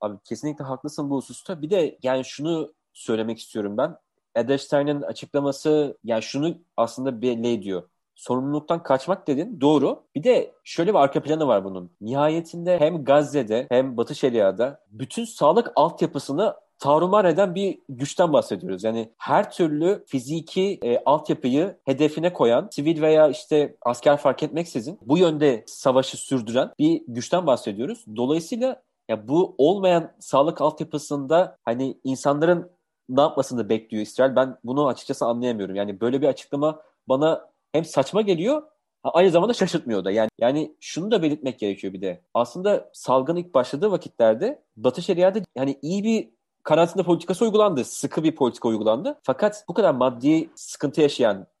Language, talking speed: Turkish, 145 wpm